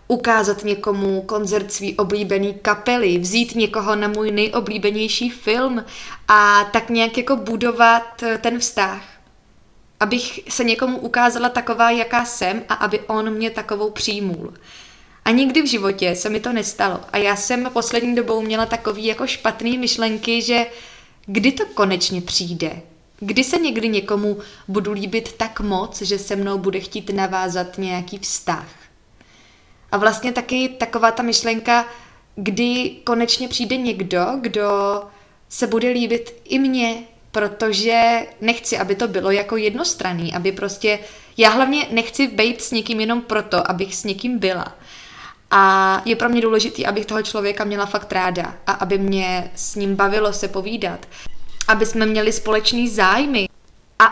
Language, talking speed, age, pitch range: Czech, 145 wpm, 20-39, 200-235 Hz